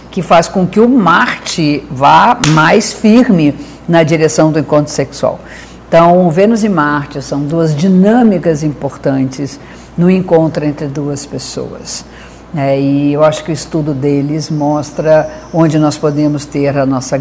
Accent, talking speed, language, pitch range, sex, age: Brazilian, 145 wpm, Portuguese, 145-175 Hz, female, 50-69